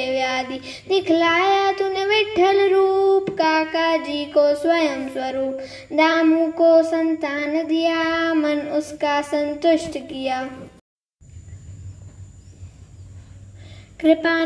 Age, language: 20-39, Hindi